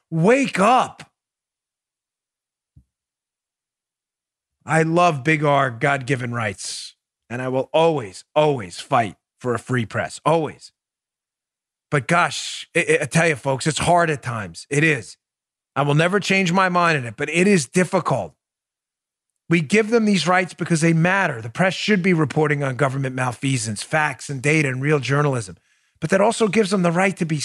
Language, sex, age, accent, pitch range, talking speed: English, male, 40-59, American, 145-210 Hz, 160 wpm